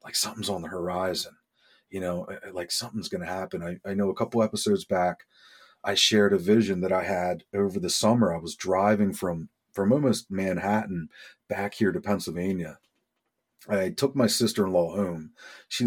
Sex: male